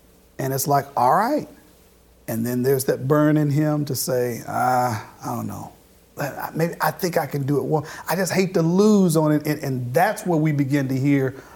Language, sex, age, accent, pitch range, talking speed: English, male, 50-69, American, 140-185 Hz, 215 wpm